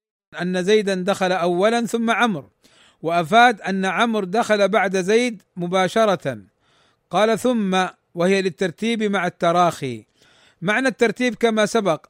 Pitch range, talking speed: 175-215 Hz, 115 wpm